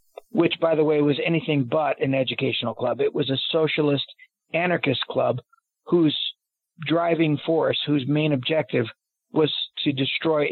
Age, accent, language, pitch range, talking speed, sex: 40-59, American, English, 130-160 Hz, 145 wpm, male